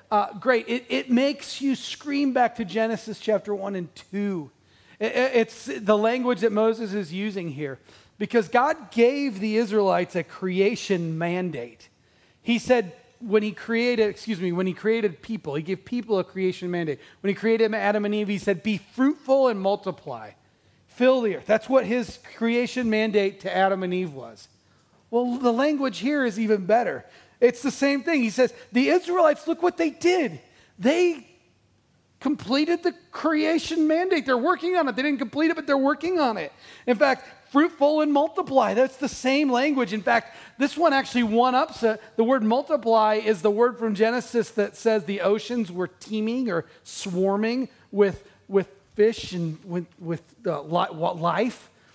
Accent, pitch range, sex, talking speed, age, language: American, 195-265 Hz, male, 170 wpm, 40-59, English